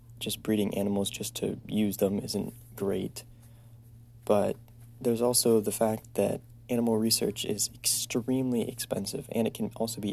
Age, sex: 20-39, male